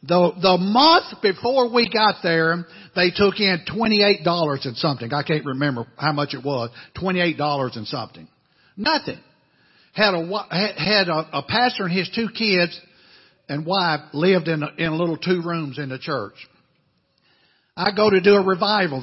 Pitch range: 150-210 Hz